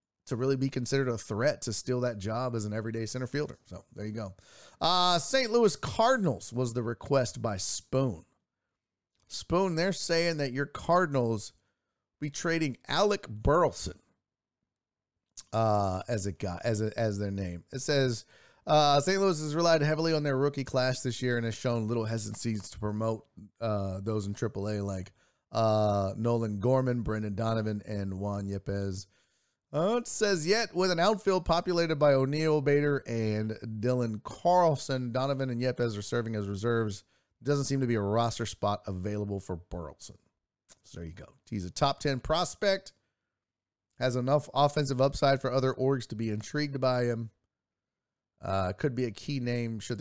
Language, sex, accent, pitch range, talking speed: English, male, American, 105-140 Hz, 170 wpm